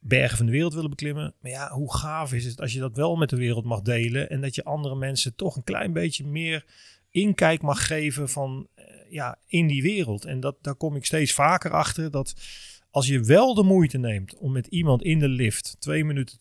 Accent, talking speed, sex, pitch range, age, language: Dutch, 225 wpm, male, 115-155 Hz, 40-59, Dutch